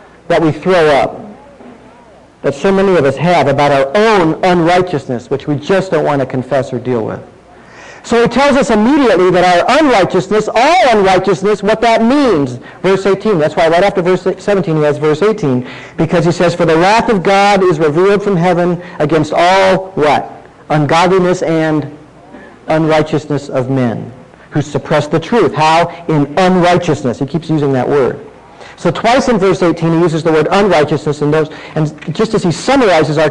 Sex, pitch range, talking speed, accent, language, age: male, 150-200 Hz, 175 wpm, American, English, 40-59